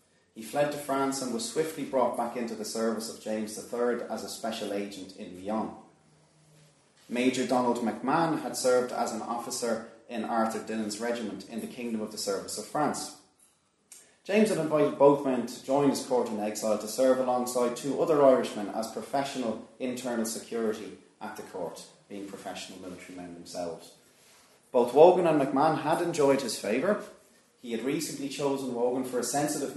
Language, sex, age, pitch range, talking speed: English, male, 30-49, 110-135 Hz, 175 wpm